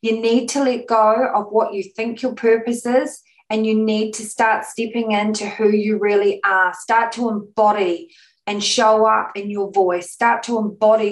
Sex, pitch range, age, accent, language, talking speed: female, 210-240 Hz, 20-39, Australian, English, 190 wpm